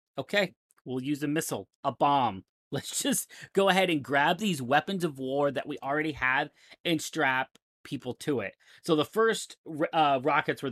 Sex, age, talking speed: male, 30-49, 180 wpm